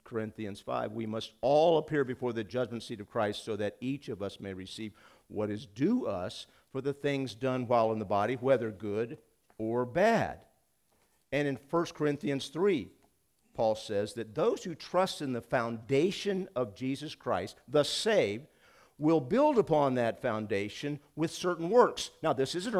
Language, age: English, 50-69